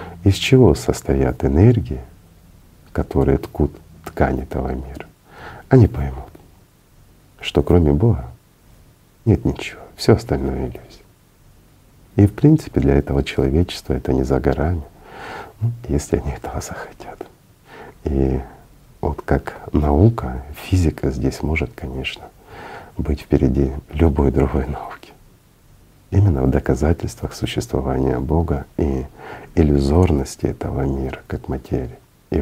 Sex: male